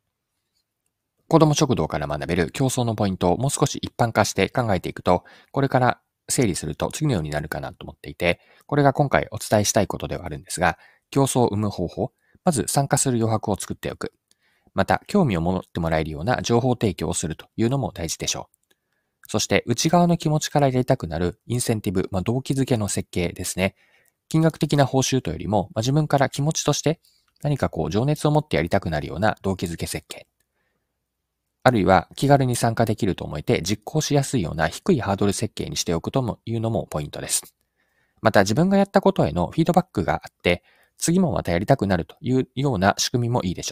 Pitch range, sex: 95-140 Hz, male